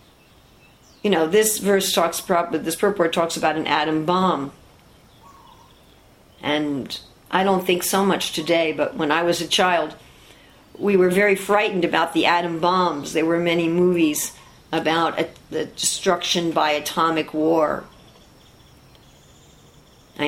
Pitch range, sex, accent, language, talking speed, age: 160-200 Hz, female, American, English, 135 wpm, 50-69